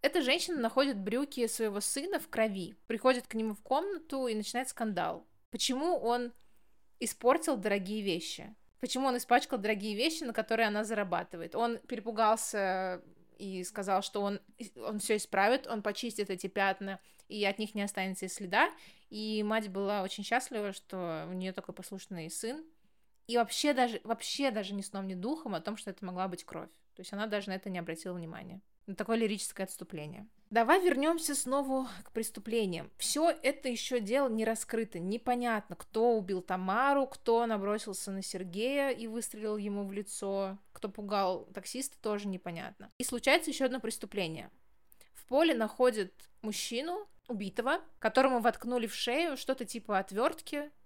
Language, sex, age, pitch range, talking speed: Russian, female, 20-39, 195-250 Hz, 160 wpm